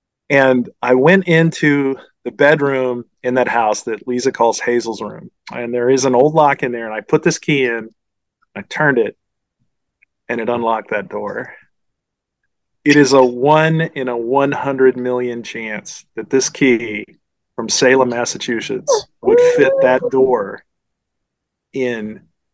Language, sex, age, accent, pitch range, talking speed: English, male, 40-59, American, 115-145 Hz, 150 wpm